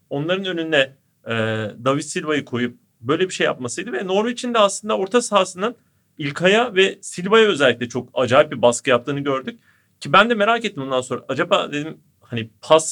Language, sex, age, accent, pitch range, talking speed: Turkish, male, 40-59, native, 140-205 Hz, 170 wpm